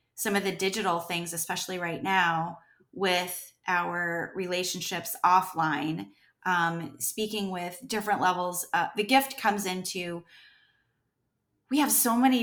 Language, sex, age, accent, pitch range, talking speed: English, female, 30-49, American, 170-200 Hz, 120 wpm